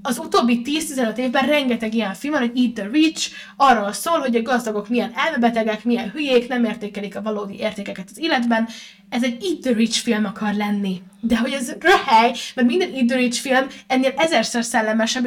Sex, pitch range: female, 220-255 Hz